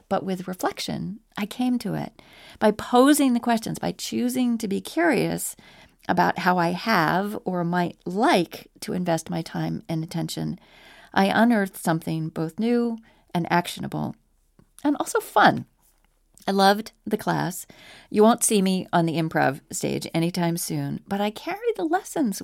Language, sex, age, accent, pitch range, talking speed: English, female, 40-59, American, 170-240 Hz, 155 wpm